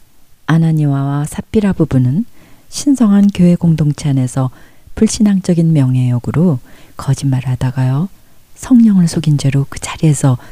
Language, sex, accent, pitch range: Korean, female, native, 135-180 Hz